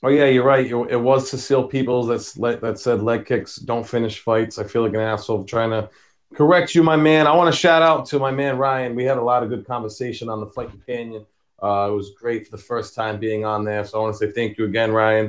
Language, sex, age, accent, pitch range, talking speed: English, male, 30-49, American, 120-175 Hz, 260 wpm